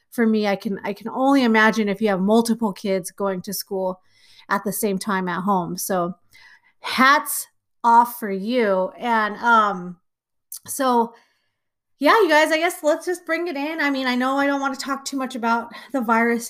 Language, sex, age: English, female, 30-49